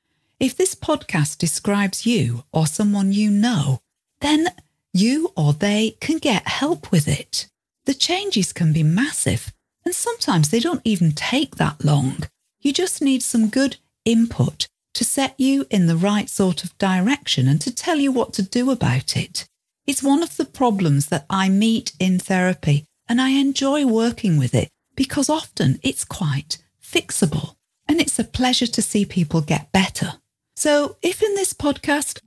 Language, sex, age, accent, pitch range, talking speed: English, female, 40-59, British, 175-270 Hz, 165 wpm